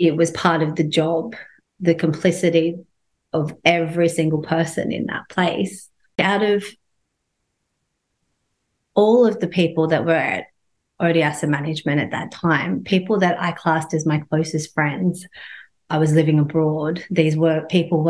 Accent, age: Australian, 30-49